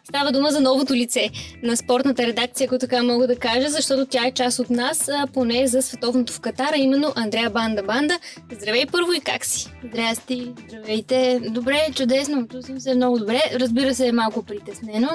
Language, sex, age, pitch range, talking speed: Bulgarian, female, 20-39, 235-275 Hz, 175 wpm